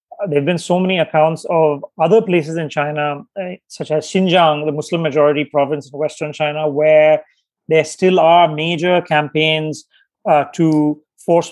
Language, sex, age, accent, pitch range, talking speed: English, male, 30-49, Indian, 150-170 Hz, 155 wpm